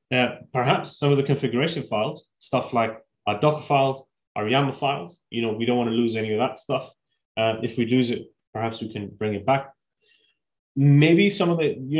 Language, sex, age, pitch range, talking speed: English, male, 20-39, 115-145 Hz, 210 wpm